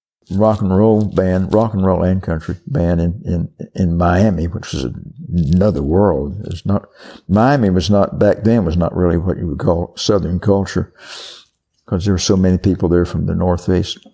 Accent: American